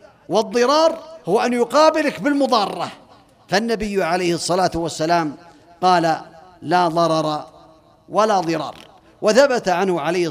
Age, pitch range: 50-69, 180-235 Hz